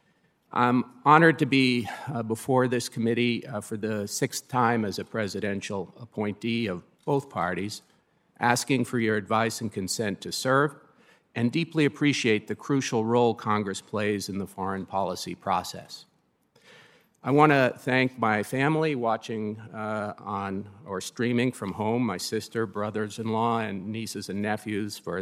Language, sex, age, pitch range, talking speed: English, male, 50-69, 105-125 Hz, 150 wpm